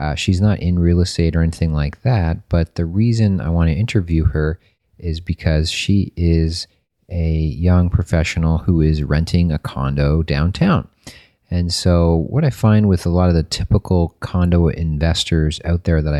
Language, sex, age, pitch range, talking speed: English, male, 40-59, 75-90 Hz, 175 wpm